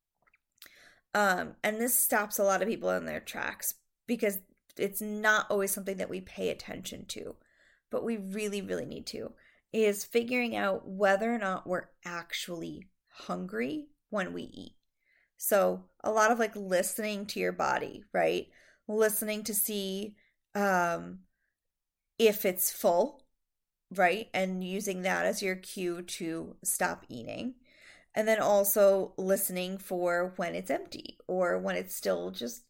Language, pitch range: English, 185-230 Hz